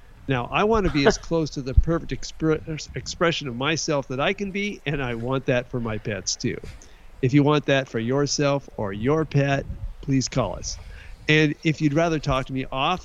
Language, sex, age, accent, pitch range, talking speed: English, male, 50-69, American, 125-160 Hz, 200 wpm